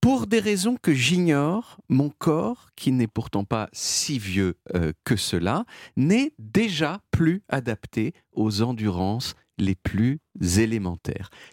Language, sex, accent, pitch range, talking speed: French, male, French, 100-170 Hz, 130 wpm